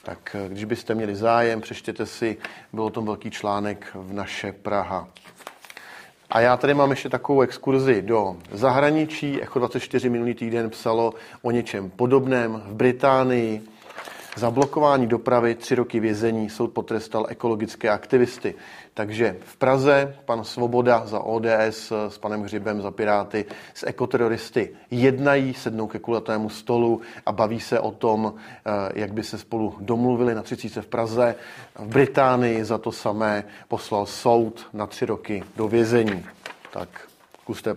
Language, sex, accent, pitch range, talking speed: Czech, male, native, 105-125 Hz, 145 wpm